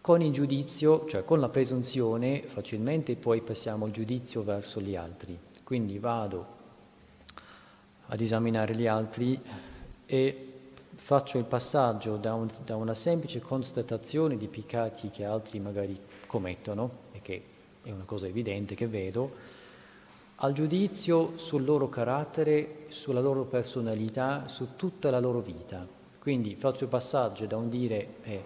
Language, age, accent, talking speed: Italian, 40-59, native, 135 wpm